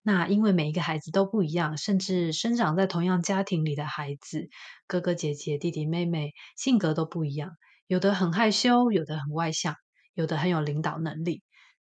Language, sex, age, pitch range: Chinese, female, 20-39, 160-195 Hz